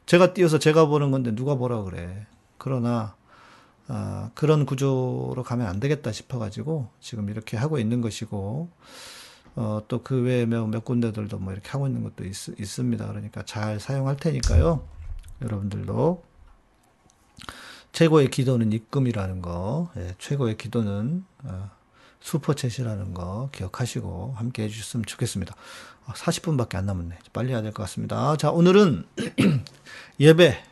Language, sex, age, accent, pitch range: Korean, male, 40-59, native, 105-145 Hz